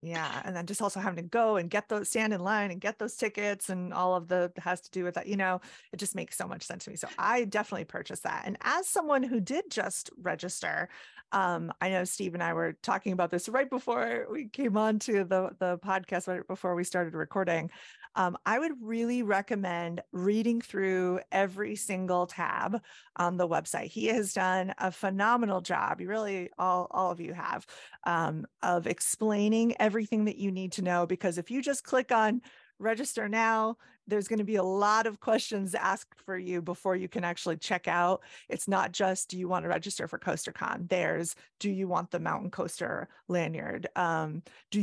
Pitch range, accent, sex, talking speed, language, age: 180-220 Hz, American, female, 205 wpm, English, 30-49